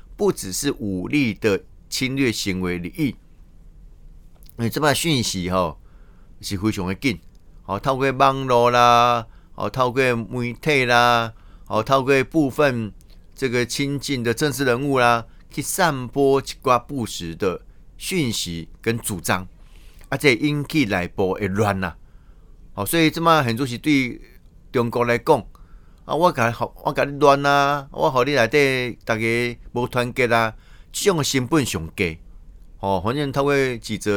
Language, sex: Chinese, male